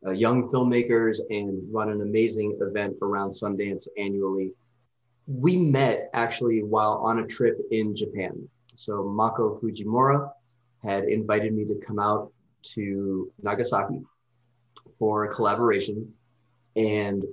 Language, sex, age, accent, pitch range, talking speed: English, male, 30-49, American, 110-130 Hz, 120 wpm